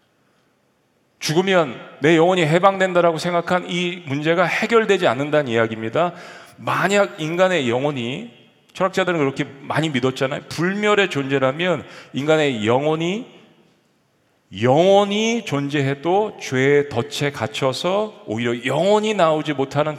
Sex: male